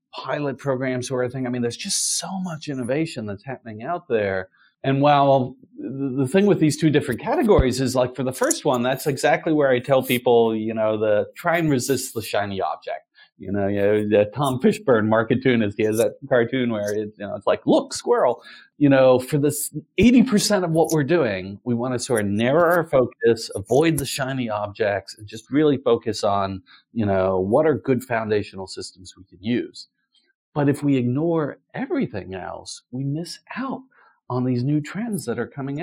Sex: male